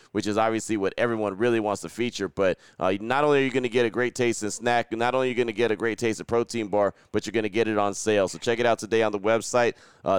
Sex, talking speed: male, 305 wpm